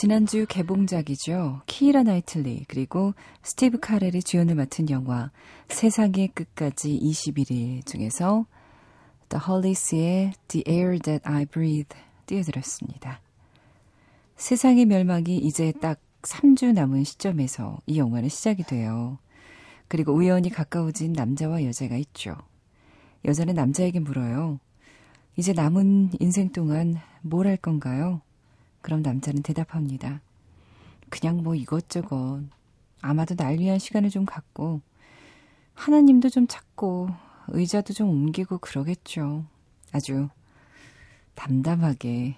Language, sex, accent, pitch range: Korean, female, native, 135-185 Hz